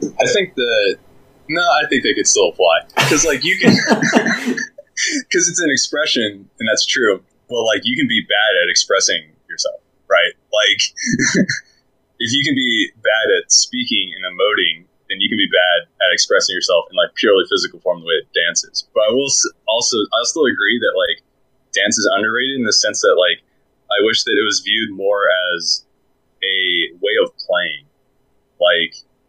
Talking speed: 180 wpm